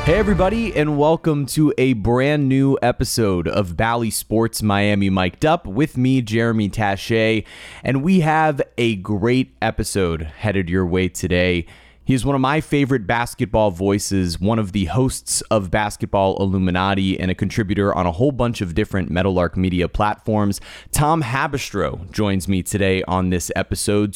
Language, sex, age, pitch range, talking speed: English, male, 30-49, 100-130 Hz, 160 wpm